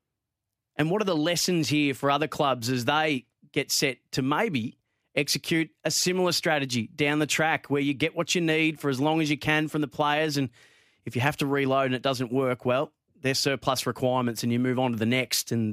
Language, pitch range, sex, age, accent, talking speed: English, 125-155 Hz, male, 30-49, Australian, 225 wpm